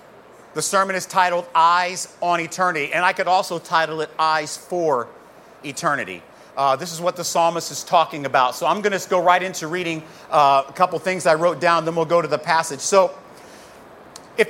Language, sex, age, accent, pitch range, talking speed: English, male, 40-59, American, 160-205 Hz, 200 wpm